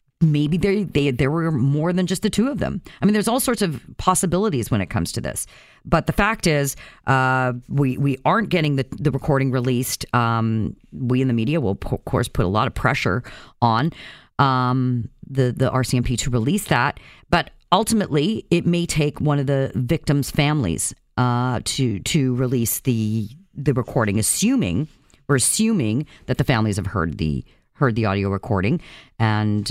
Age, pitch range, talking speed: 40-59, 120-160 Hz, 180 wpm